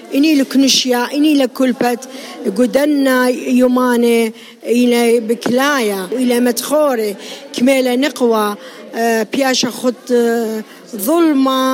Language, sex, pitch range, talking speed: English, female, 235-275 Hz, 75 wpm